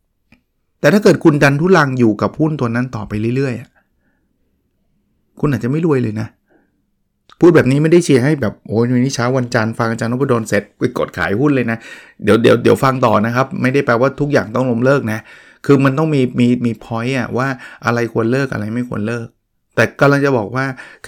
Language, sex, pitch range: Thai, male, 115-150 Hz